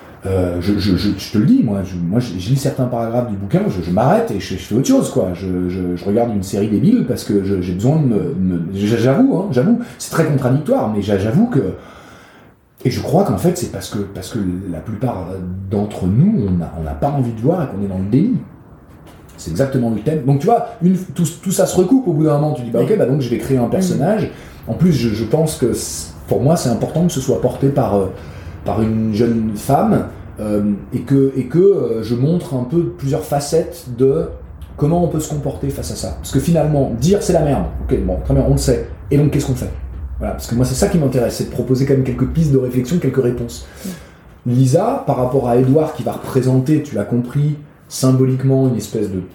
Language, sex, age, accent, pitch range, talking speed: French, male, 30-49, French, 100-140 Hz, 240 wpm